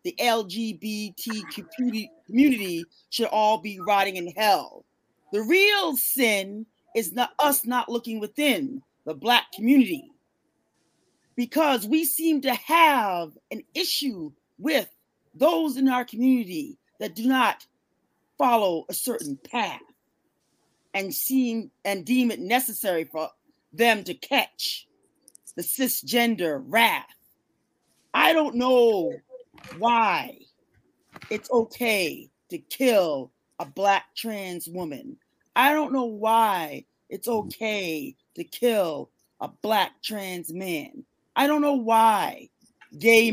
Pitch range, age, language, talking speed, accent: 210-275 Hz, 40-59, English, 115 wpm, American